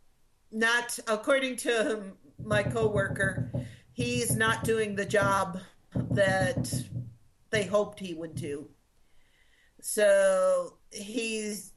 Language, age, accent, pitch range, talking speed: English, 50-69, American, 180-220 Hz, 90 wpm